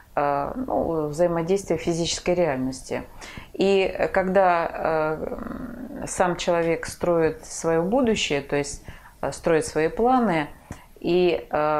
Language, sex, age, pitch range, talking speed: Russian, female, 30-49, 150-185 Hz, 90 wpm